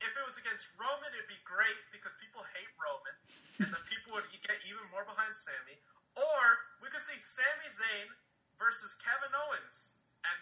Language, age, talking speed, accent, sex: English, 30-49, 180 wpm, American, male